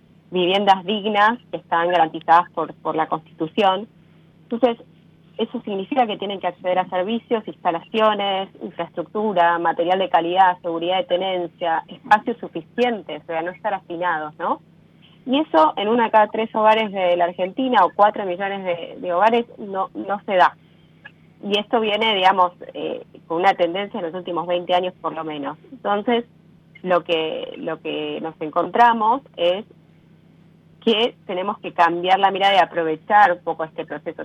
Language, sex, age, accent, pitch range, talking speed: Italian, female, 20-39, Argentinian, 165-195 Hz, 160 wpm